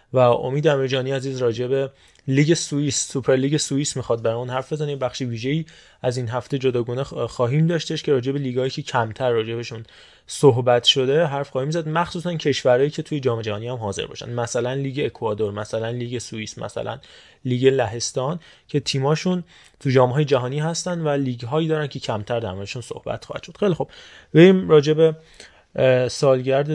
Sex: male